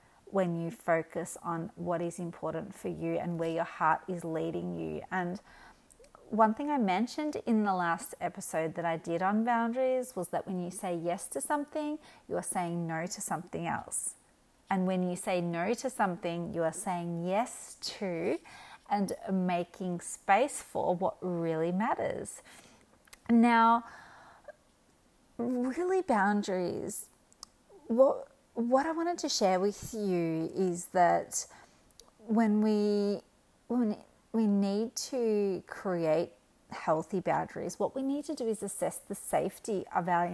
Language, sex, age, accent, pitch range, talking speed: English, female, 30-49, Australian, 170-230 Hz, 145 wpm